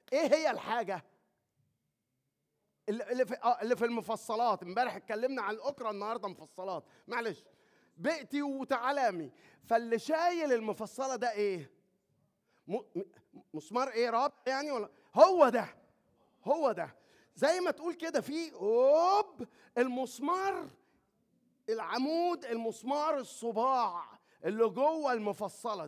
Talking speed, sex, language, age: 105 wpm, male, Arabic, 30-49